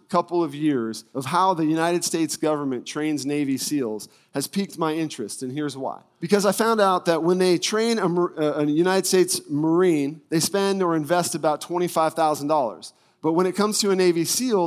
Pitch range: 160-205 Hz